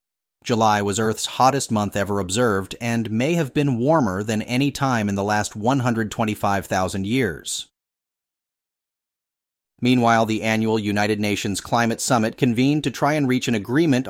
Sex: male